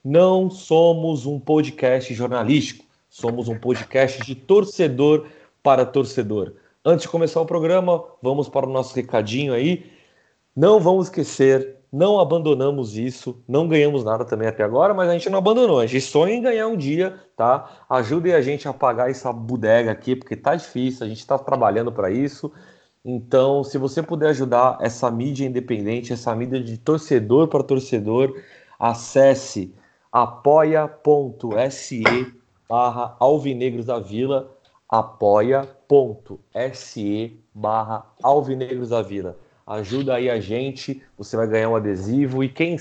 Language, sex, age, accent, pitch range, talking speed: Portuguese, male, 30-49, Brazilian, 120-150 Hz, 140 wpm